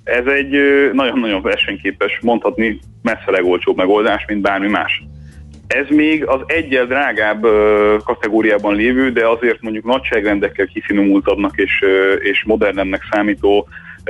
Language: Hungarian